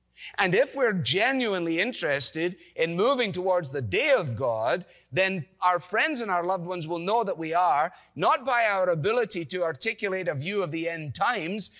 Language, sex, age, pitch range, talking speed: English, male, 40-59, 155-200 Hz, 185 wpm